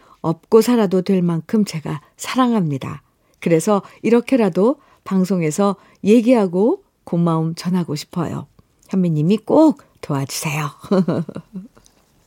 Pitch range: 165-230 Hz